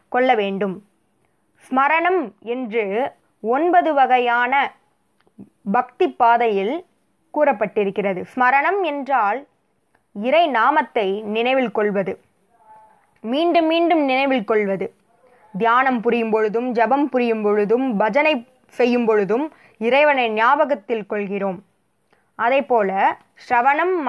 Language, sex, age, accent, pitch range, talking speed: Tamil, female, 20-39, native, 210-270 Hz, 85 wpm